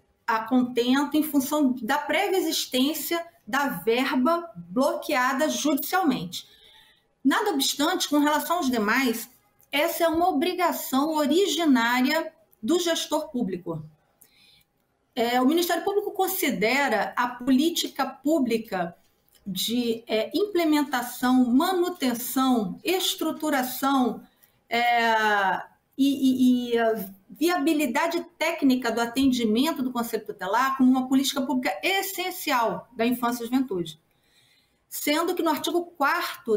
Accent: Brazilian